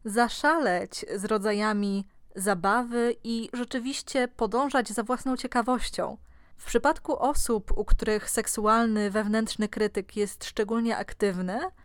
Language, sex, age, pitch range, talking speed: Polish, female, 20-39, 205-250 Hz, 105 wpm